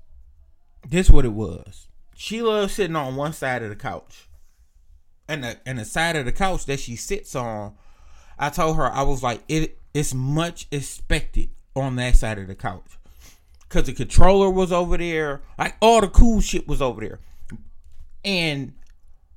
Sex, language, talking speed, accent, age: male, English, 175 wpm, American, 20-39